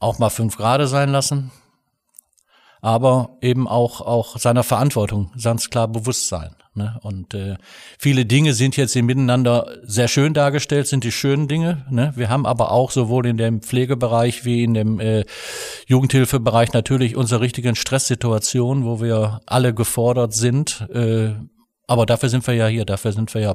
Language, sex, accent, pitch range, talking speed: German, male, German, 110-130 Hz, 170 wpm